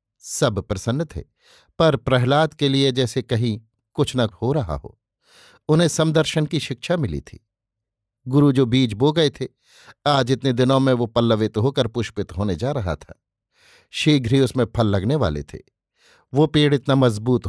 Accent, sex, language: native, male, Hindi